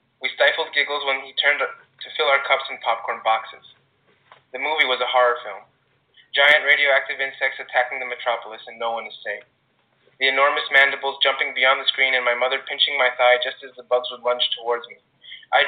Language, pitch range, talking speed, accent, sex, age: English, 125-140 Hz, 200 wpm, American, male, 20-39